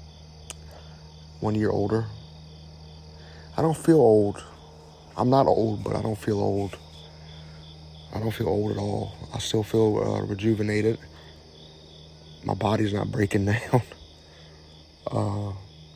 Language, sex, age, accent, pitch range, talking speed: English, male, 30-49, American, 80-115 Hz, 120 wpm